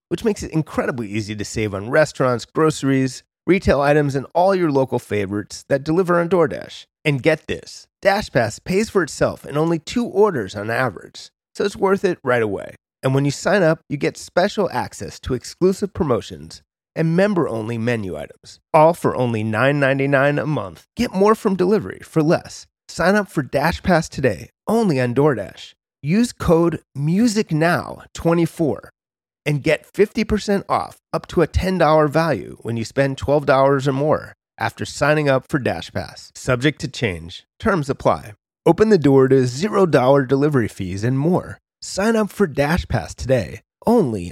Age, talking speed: 30-49, 160 wpm